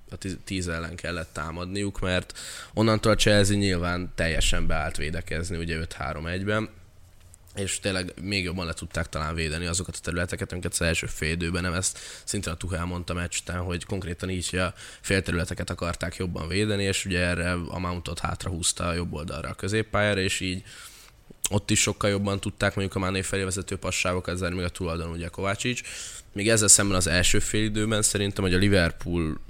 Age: 10-29